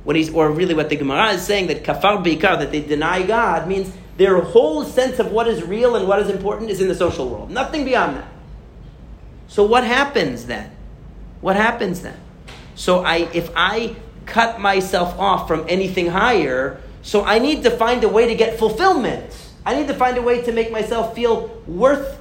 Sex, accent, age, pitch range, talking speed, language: male, American, 40-59, 155-220 Hz, 190 wpm, English